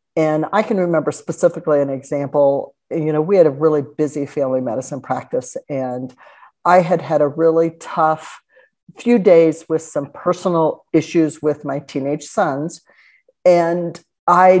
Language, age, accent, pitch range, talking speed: English, 50-69, American, 145-180 Hz, 150 wpm